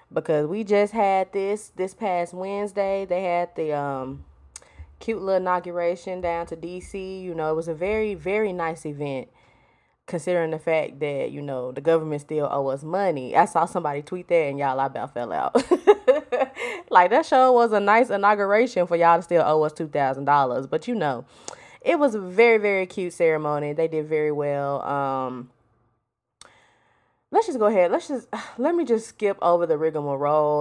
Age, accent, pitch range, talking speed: 20-39, American, 155-210 Hz, 180 wpm